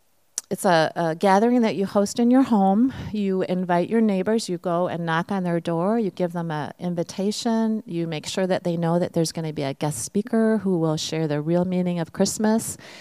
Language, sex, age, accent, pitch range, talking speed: English, female, 40-59, American, 165-205 Hz, 220 wpm